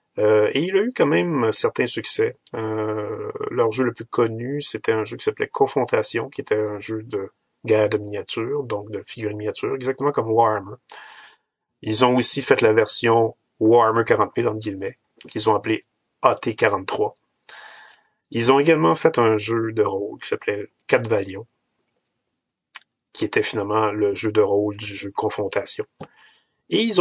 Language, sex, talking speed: French, male, 165 wpm